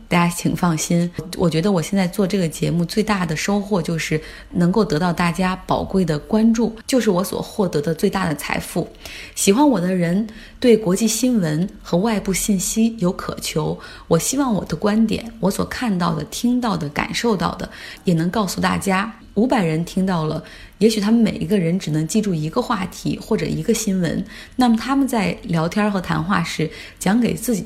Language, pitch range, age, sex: Chinese, 170-220 Hz, 20-39, female